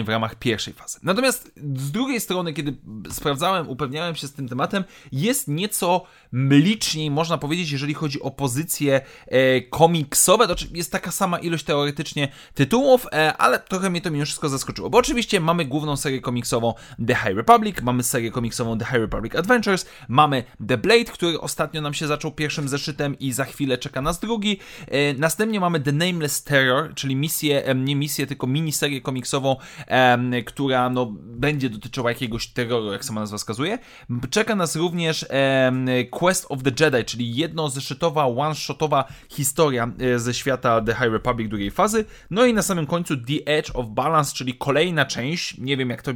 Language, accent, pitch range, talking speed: Polish, native, 125-165 Hz, 165 wpm